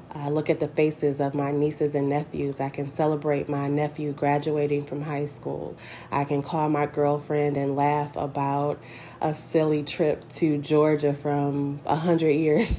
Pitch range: 140-150 Hz